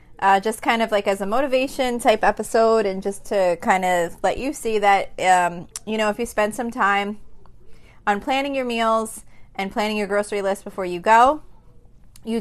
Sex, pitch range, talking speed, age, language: female, 185-220 Hz, 195 wpm, 20-39, English